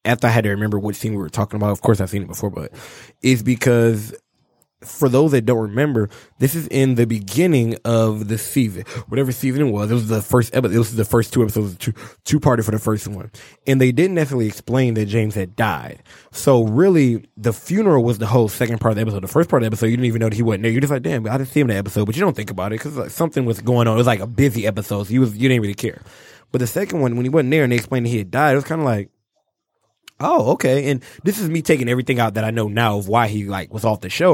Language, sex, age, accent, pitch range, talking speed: English, male, 20-39, American, 110-135 Hz, 290 wpm